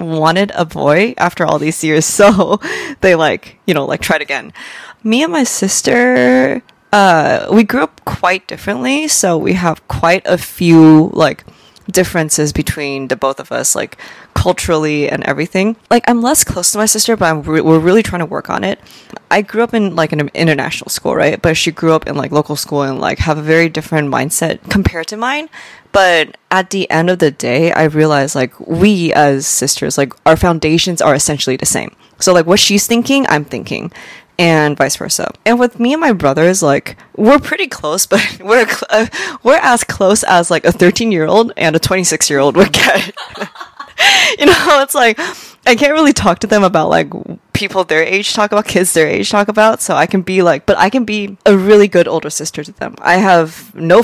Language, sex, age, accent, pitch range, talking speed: English, female, 20-39, American, 155-210 Hz, 200 wpm